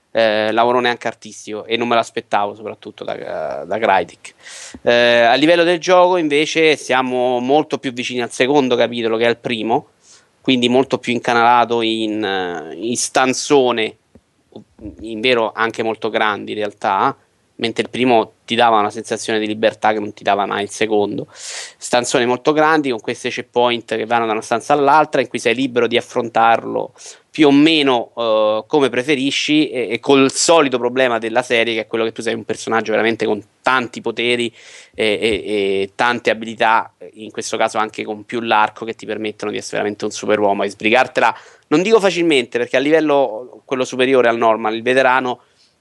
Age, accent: 30-49, native